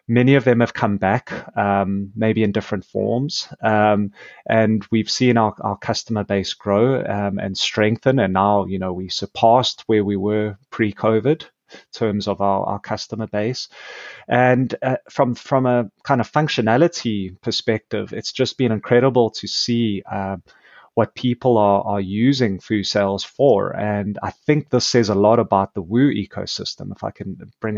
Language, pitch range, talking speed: English, 105-125 Hz, 170 wpm